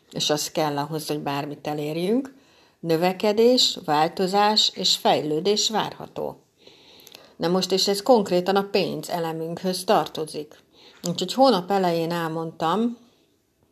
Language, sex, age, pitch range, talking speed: Hungarian, female, 60-79, 155-195 Hz, 110 wpm